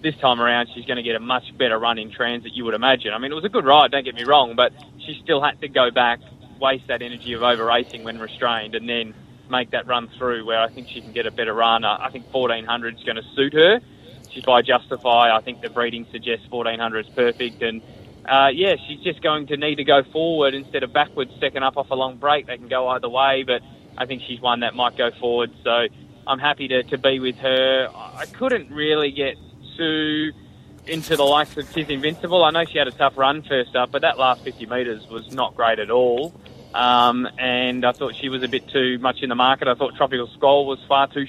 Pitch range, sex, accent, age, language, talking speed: 120-140 Hz, male, Australian, 20-39, English, 240 wpm